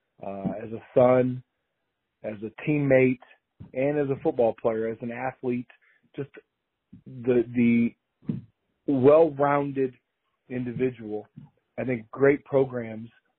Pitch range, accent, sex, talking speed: 115-135 Hz, American, male, 110 wpm